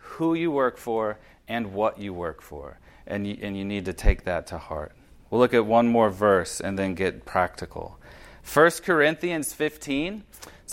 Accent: American